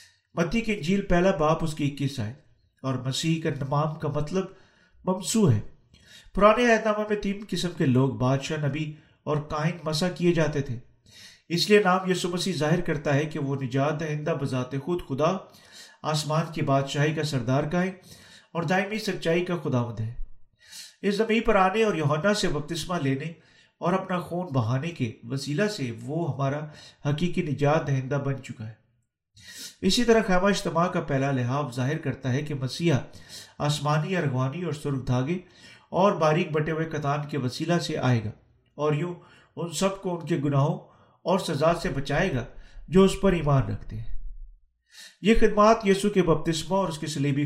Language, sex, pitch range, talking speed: Urdu, male, 135-180 Hz, 175 wpm